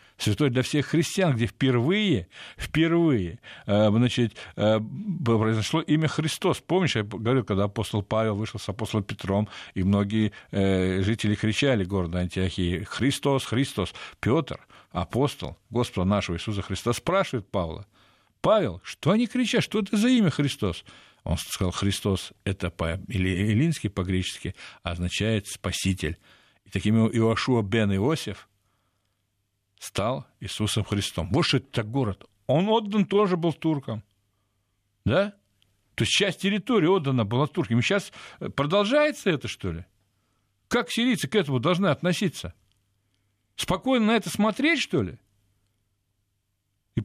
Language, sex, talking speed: Russian, male, 125 wpm